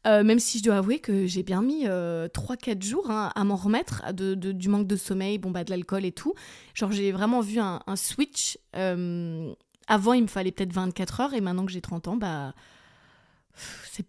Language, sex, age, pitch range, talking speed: French, female, 20-39, 185-230 Hz, 225 wpm